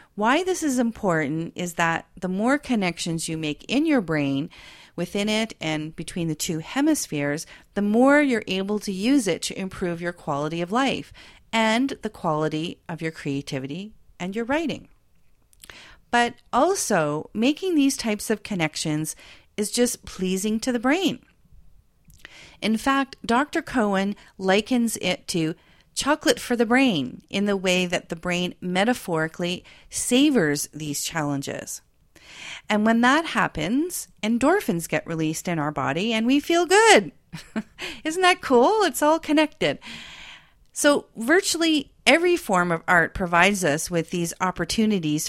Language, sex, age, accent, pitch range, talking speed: English, female, 40-59, American, 170-260 Hz, 145 wpm